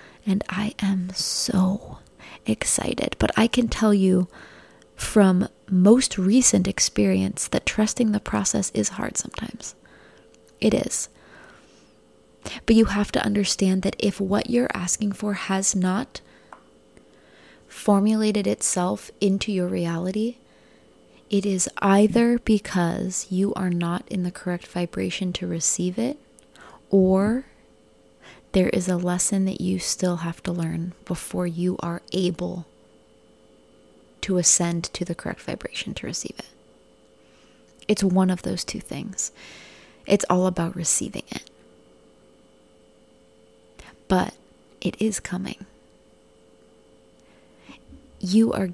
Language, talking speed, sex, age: English, 120 wpm, female, 20-39